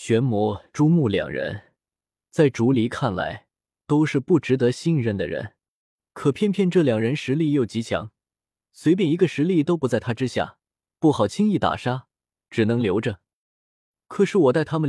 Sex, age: male, 20-39